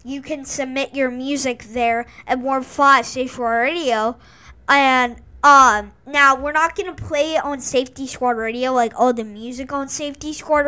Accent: American